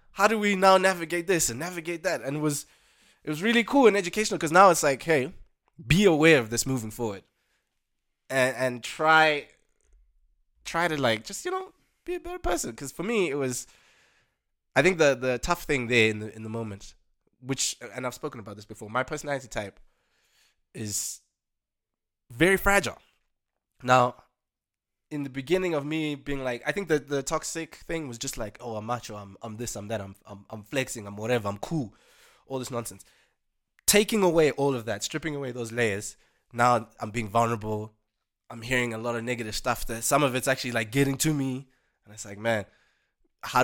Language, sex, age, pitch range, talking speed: English, male, 20-39, 115-160 Hz, 195 wpm